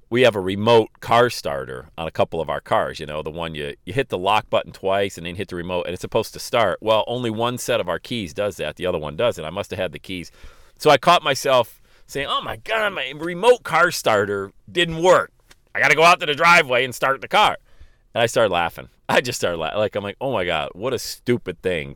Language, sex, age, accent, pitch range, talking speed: English, male, 40-59, American, 90-130 Hz, 260 wpm